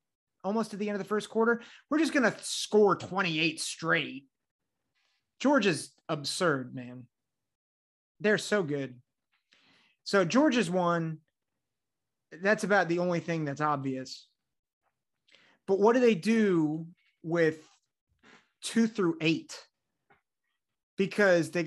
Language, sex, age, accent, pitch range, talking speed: English, male, 30-49, American, 155-220 Hz, 115 wpm